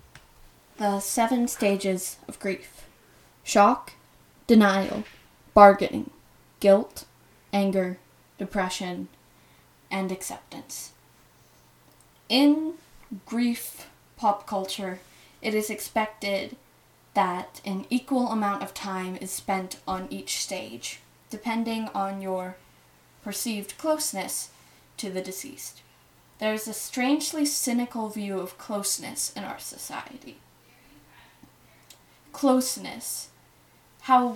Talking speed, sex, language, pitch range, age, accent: 90 wpm, female, English, 190-240 Hz, 10-29, American